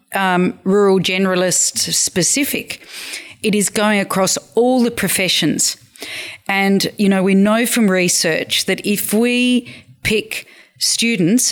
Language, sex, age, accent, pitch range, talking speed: English, female, 40-59, Australian, 180-220 Hz, 120 wpm